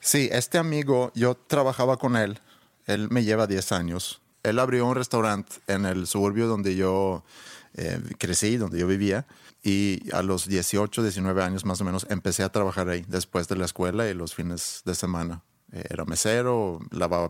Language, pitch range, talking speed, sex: Spanish, 90-110 Hz, 175 wpm, male